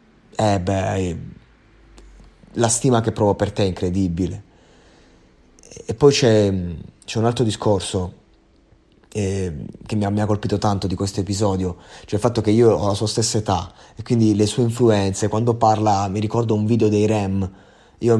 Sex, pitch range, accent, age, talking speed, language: male, 100-115 Hz, native, 20-39, 165 wpm, Italian